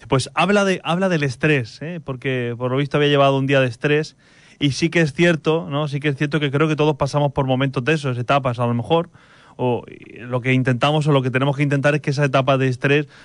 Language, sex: Spanish, male